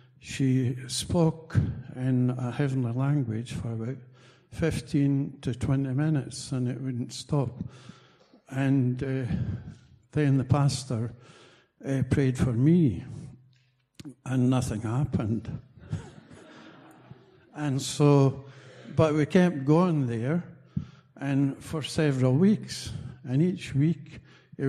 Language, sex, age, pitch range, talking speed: English, male, 60-79, 125-140 Hz, 105 wpm